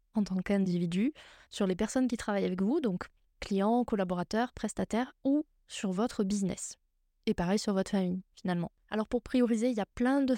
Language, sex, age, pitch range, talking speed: French, female, 20-39, 205-245 Hz, 185 wpm